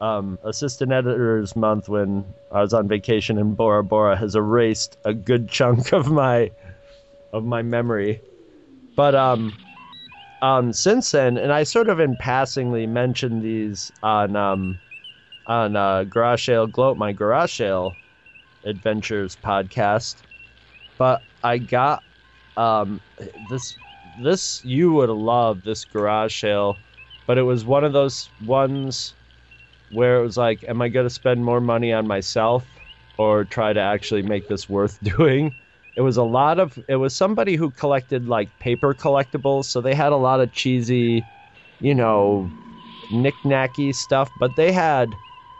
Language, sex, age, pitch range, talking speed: English, male, 30-49, 110-130 Hz, 150 wpm